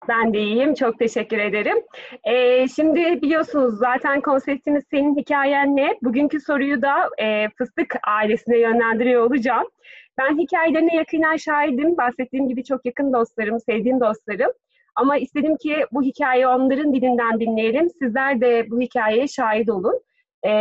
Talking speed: 140 wpm